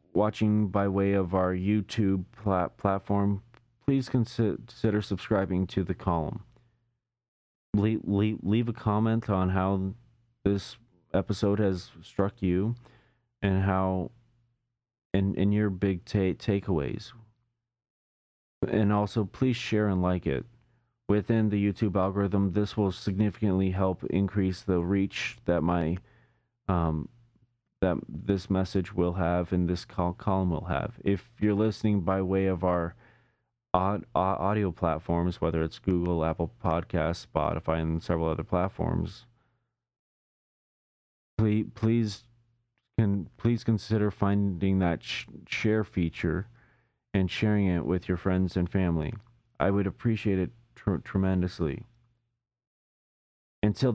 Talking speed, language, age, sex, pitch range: 120 wpm, English, 30-49, male, 90-115 Hz